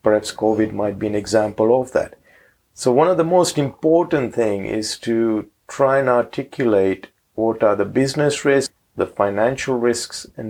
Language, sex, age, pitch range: English, male, 50-69, 110-135 Hz